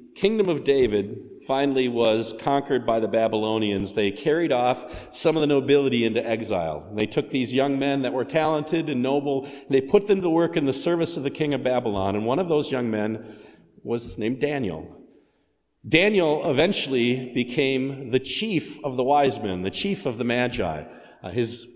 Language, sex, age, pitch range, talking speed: English, male, 50-69, 110-150 Hz, 180 wpm